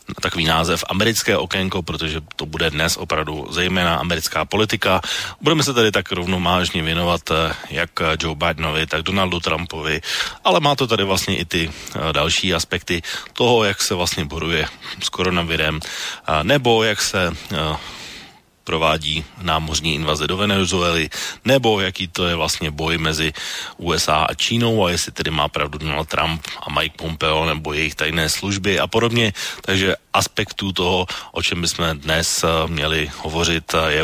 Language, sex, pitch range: Slovak, male, 80-95 Hz